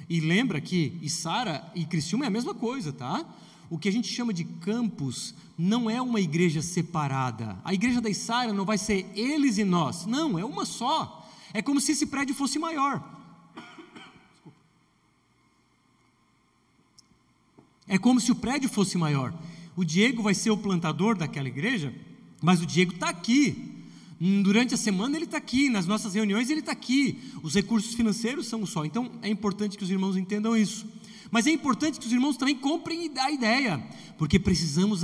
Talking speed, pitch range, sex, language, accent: 175 wpm, 180-250 Hz, male, Portuguese, Brazilian